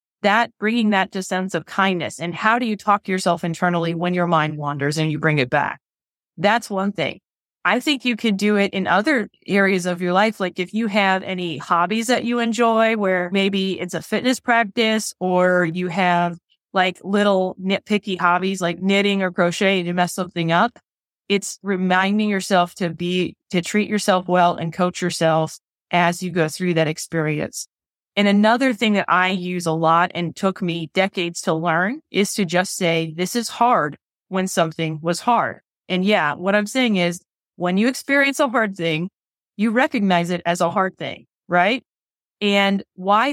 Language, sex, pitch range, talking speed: English, female, 175-205 Hz, 185 wpm